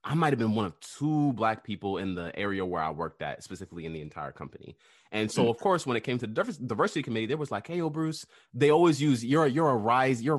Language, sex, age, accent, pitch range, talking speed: English, male, 20-39, American, 95-140 Hz, 265 wpm